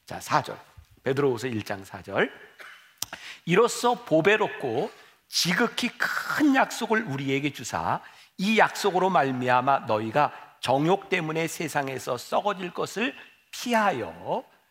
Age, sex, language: 50-69, male, Korean